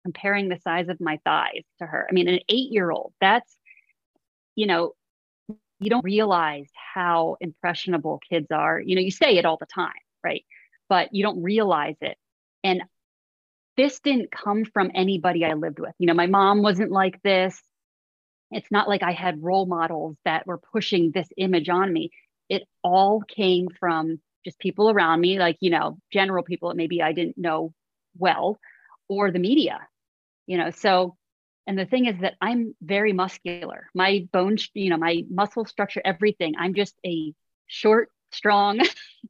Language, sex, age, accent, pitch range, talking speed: English, female, 30-49, American, 175-210 Hz, 170 wpm